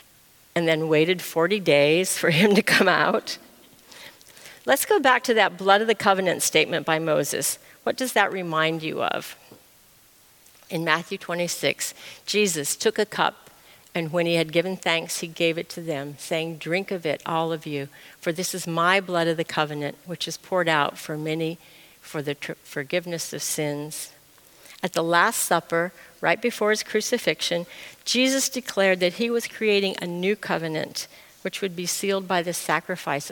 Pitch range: 165-205 Hz